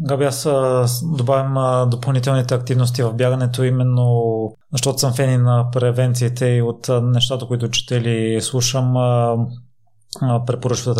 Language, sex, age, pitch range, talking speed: Bulgarian, male, 20-39, 115-125 Hz, 110 wpm